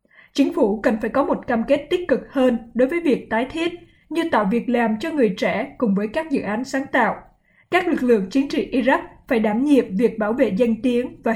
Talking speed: 240 wpm